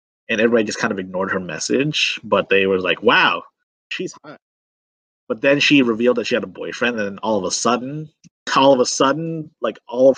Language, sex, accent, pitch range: English, male, American, 95-130 Hz